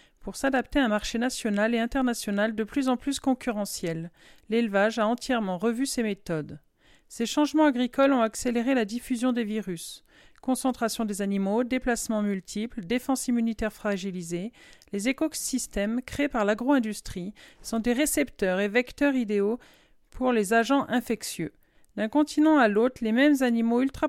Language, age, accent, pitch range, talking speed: French, 40-59, French, 210-255 Hz, 145 wpm